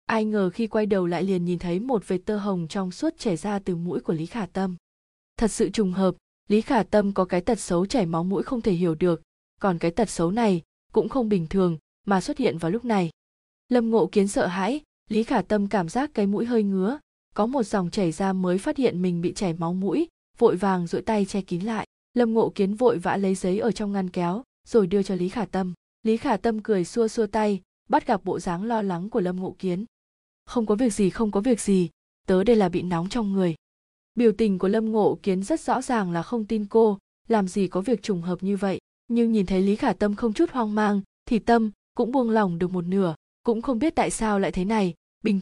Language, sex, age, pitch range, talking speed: Vietnamese, female, 20-39, 185-230 Hz, 245 wpm